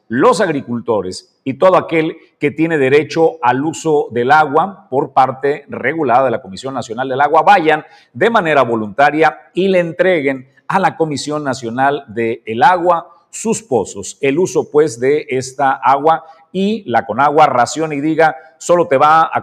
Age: 50-69